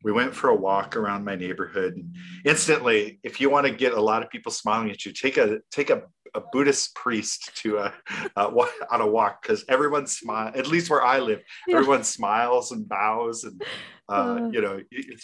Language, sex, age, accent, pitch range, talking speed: English, male, 40-59, American, 105-160 Hz, 210 wpm